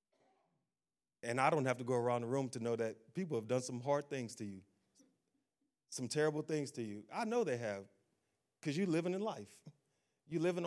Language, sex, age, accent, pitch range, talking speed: English, male, 30-49, American, 115-150 Hz, 205 wpm